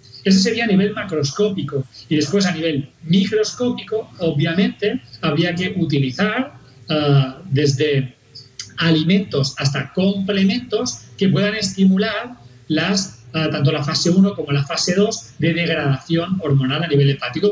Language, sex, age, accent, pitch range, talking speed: Spanish, male, 40-59, Spanish, 140-195 Hz, 130 wpm